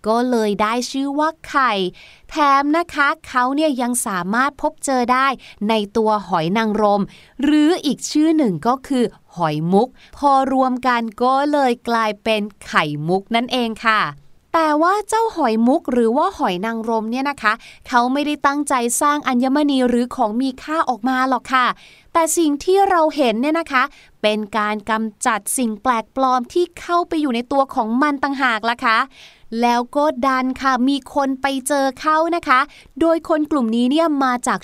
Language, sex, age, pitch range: Thai, female, 20-39, 225-295 Hz